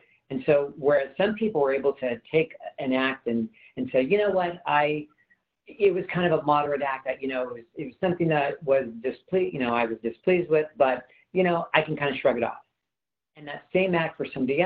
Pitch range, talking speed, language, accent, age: 125-165 Hz, 240 wpm, English, American, 50-69